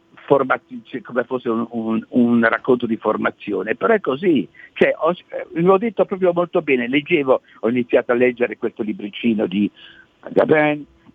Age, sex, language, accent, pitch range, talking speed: 60-79, male, Italian, native, 110-180 Hz, 135 wpm